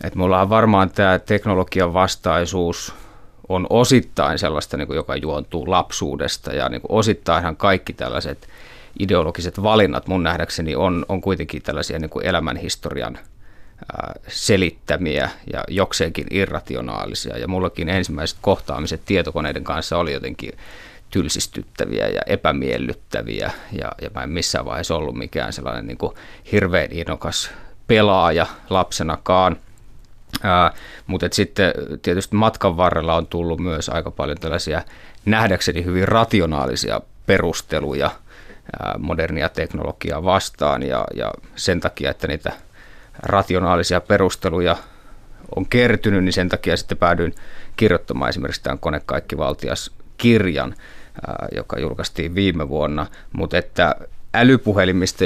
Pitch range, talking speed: 85-100 Hz, 115 wpm